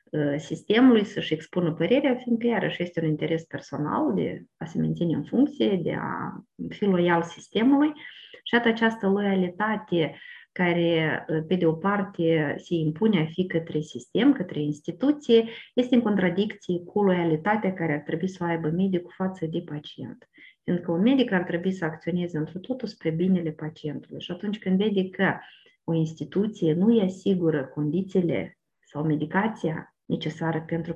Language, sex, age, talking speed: Romanian, female, 30-49, 155 wpm